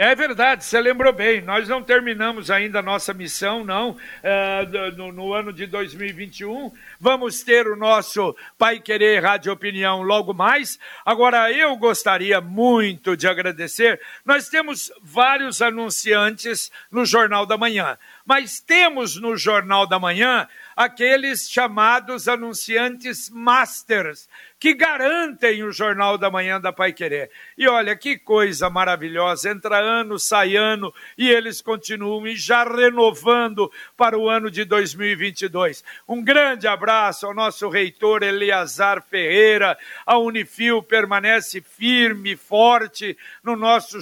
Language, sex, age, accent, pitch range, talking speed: Portuguese, male, 60-79, Brazilian, 200-240 Hz, 130 wpm